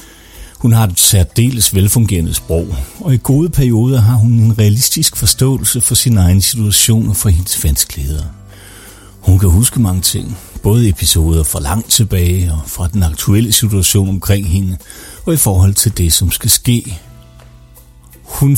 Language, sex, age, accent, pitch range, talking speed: Danish, male, 60-79, native, 90-115 Hz, 160 wpm